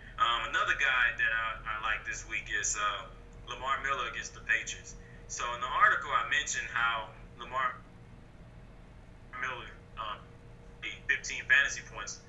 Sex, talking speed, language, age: male, 145 wpm, English, 20-39